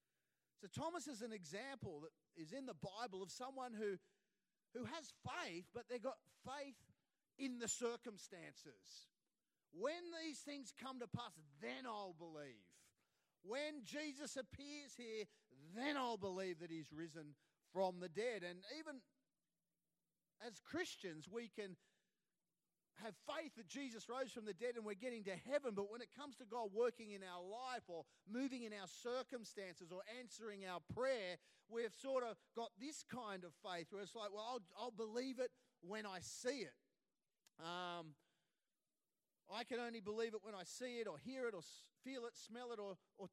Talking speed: 170 wpm